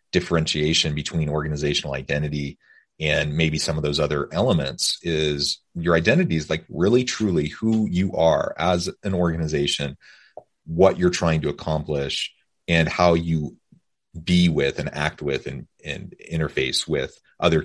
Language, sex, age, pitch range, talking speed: English, male, 30-49, 75-85 Hz, 145 wpm